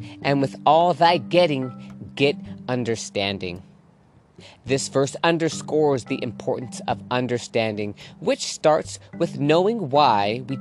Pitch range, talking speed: 105-150 Hz, 115 wpm